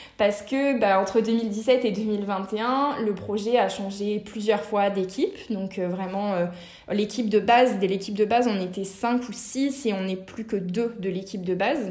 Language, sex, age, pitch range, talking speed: French, female, 20-39, 200-245 Hz, 200 wpm